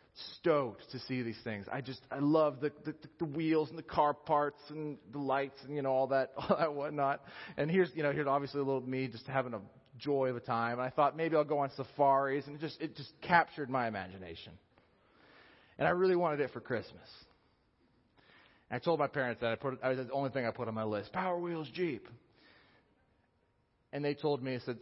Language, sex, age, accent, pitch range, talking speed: English, male, 30-49, American, 110-145 Hz, 230 wpm